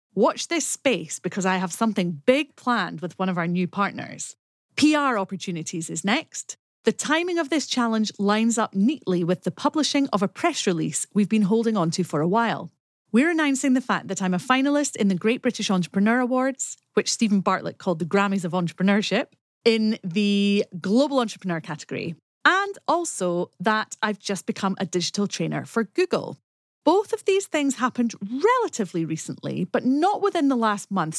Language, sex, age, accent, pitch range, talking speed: English, female, 30-49, British, 180-255 Hz, 180 wpm